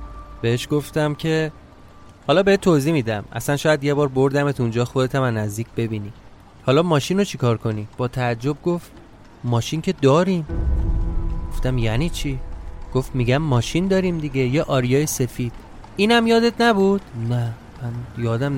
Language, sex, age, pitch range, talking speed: Persian, male, 30-49, 115-160 Hz, 145 wpm